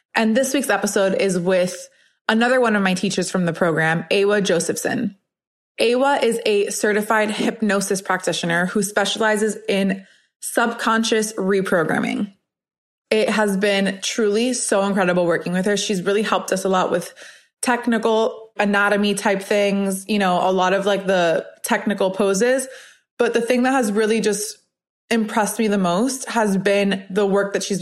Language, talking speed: English, 155 wpm